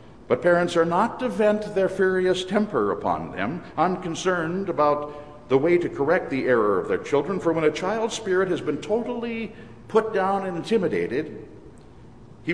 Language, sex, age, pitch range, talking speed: English, male, 60-79, 140-185 Hz, 165 wpm